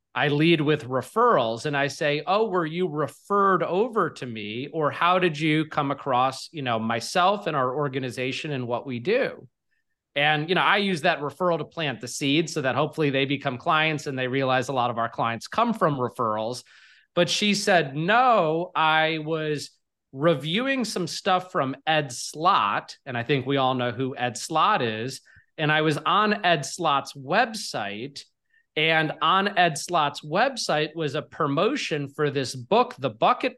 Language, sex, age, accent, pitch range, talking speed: English, male, 30-49, American, 135-180 Hz, 180 wpm